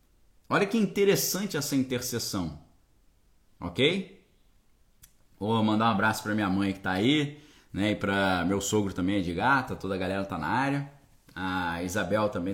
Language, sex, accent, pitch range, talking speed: Portuguese, male, Brazilian, 100-160 Hz, 165 wpm